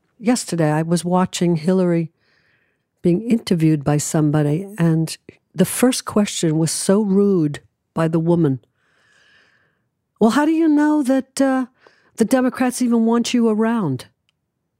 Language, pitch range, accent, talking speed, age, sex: English, 170-230 Hz, American, 130 wpm, 60-79, female